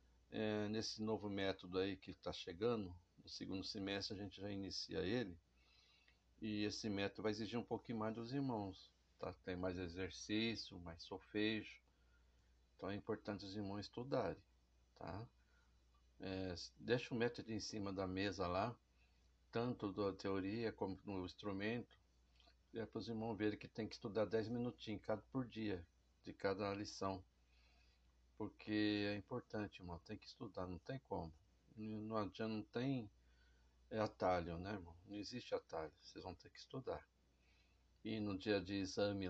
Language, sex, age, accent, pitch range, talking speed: Portuguese, male, 60-79, Brazilian, 80-110 Hz, 155 wpm